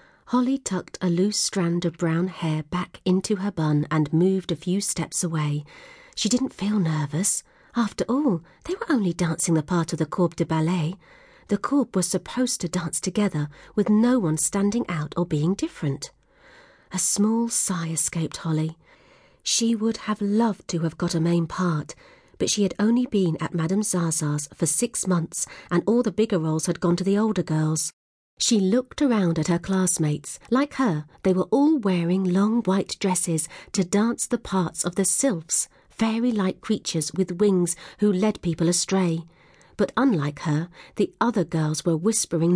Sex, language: female, English